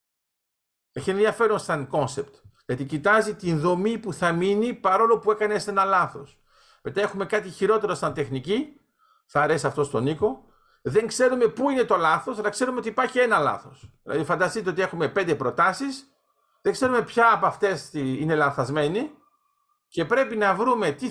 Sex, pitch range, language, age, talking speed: male, 145-235 Hz, Greek, 50-69, 165 wpm